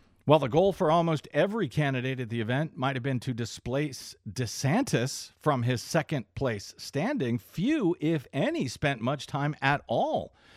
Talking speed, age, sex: 165 wpm, 50-69, male